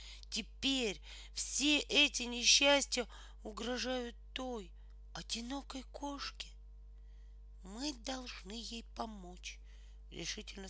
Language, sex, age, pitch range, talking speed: Russian, female, 40-59, 180-275 Hz, 75 wpm